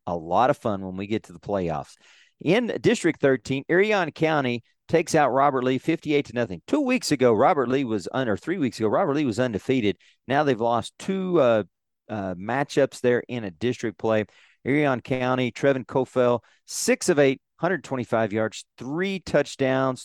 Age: 40-59